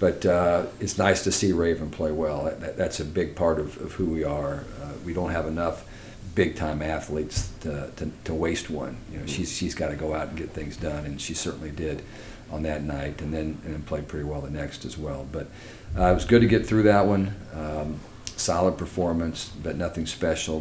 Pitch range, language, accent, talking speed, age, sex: 75-90 Hz, English, American, 220 wpm, 50-69, male